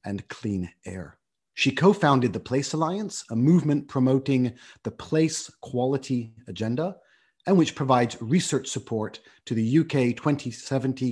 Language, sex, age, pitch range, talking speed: English, male, 30-49, 115-150 Hz, 130 wpm